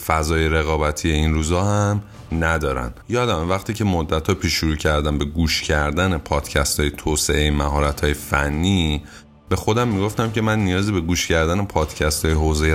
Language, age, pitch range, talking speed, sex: Persian, 30-49, 80-100 Hz, 155 wpm, male